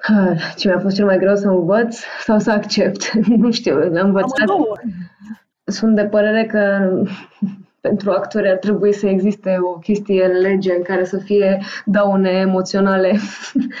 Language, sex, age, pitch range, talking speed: Romanian, female, 20-39, 185-220 Hz, 150 wpm